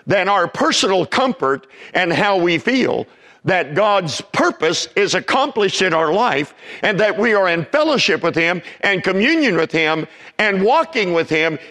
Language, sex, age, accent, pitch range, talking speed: English, male, 50-69, American, 160-240 Hz, 165 wpm